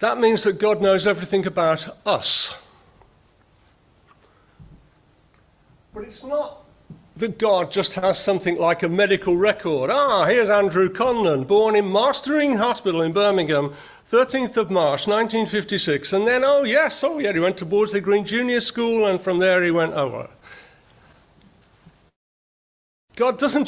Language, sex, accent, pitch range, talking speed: English, male, British, 185-235 Hz, 140 wpm